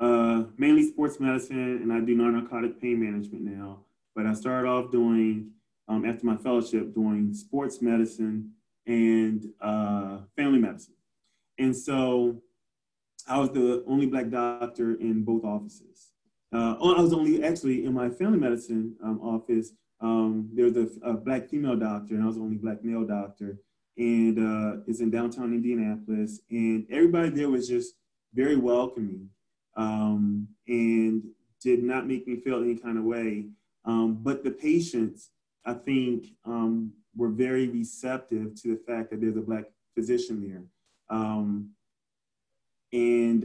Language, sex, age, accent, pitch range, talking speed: English, male, 20-39, American, 110-130 Hz, 150 wpm